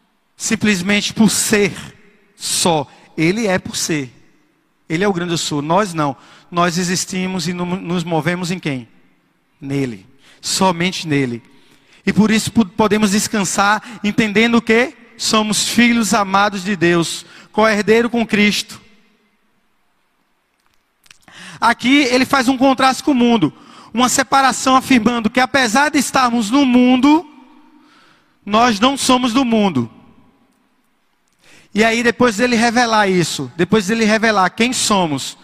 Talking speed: 125 wpm